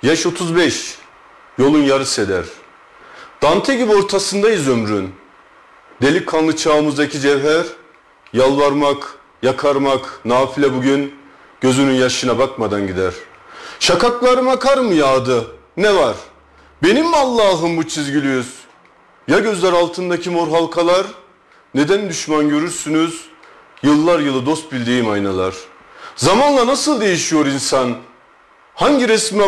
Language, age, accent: Turkish, 40-59, native